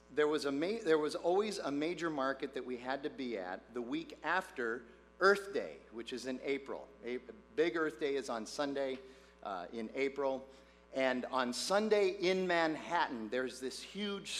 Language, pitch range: English, 130-170 Hz